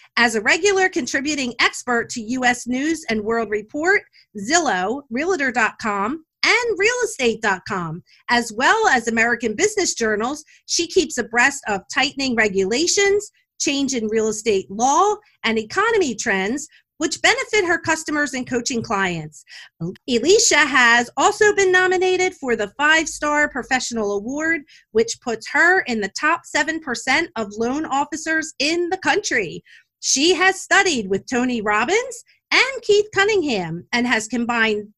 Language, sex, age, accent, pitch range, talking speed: English, female, 40-59, American, 225-355 Hz, 135 wpm